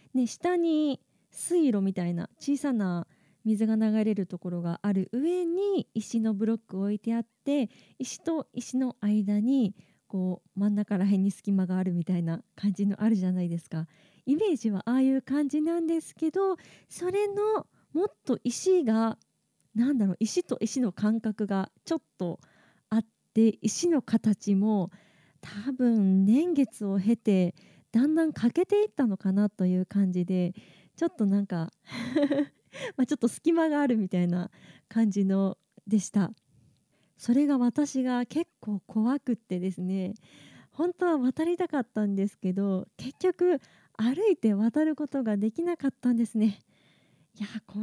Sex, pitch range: female, 200-280 Hz